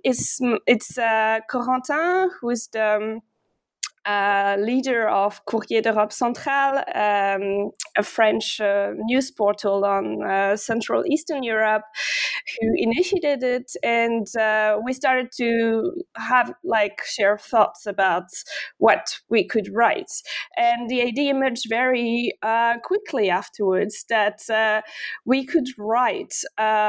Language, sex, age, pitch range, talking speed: English, female, 20-39, 215-270 Hz, 125 wpm